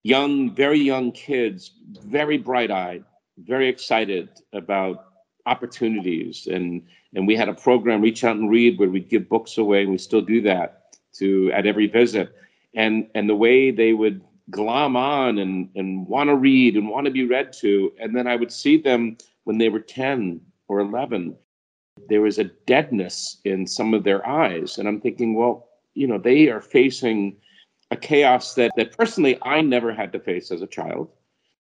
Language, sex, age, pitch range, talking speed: English, male, 50-69, 105-130 Hz, 185 wpm